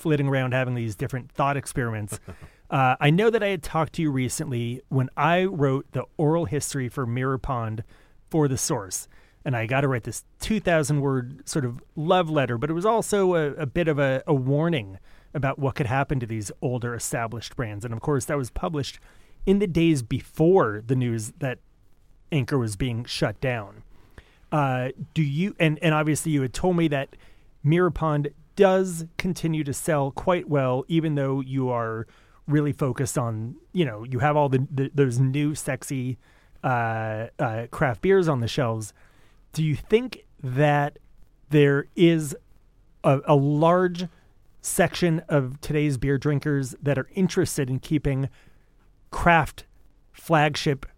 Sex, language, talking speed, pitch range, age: male, English, 170 wpm, 125-155 Hz, 30-49